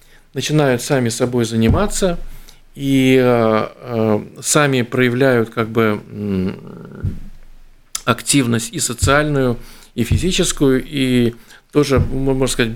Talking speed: 90 wpm